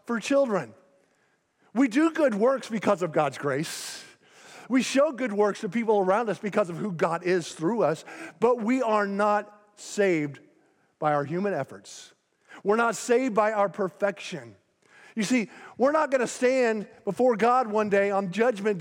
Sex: male